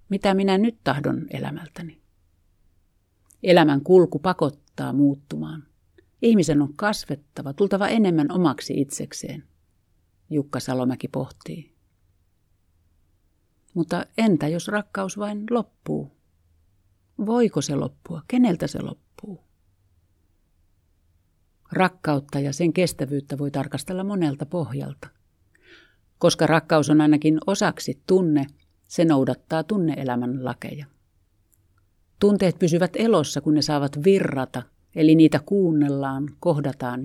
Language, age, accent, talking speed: Finnish, 50-69, native, 95 wpm